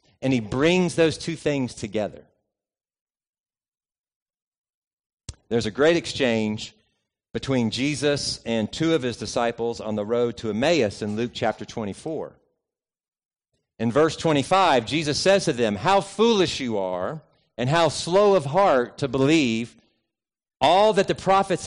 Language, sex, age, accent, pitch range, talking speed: English, male, 50-69, American, 115-170 Hz, 135 wpm